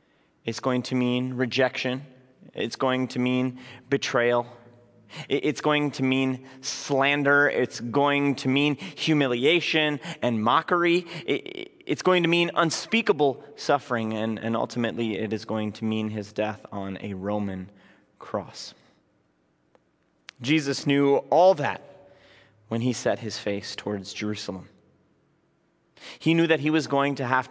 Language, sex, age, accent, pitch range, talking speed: English, male, 30-49, American, 110-150 Hz, 135 wpm